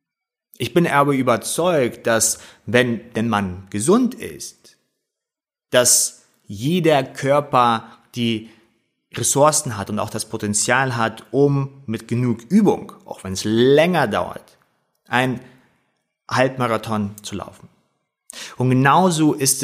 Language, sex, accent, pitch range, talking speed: German, male, German, 115-145 Hz, 115 wpm